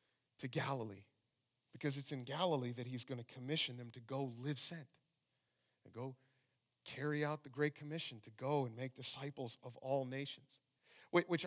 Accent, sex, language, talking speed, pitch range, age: American, male, English, 165 wpm, 120-205 Hz, 40-59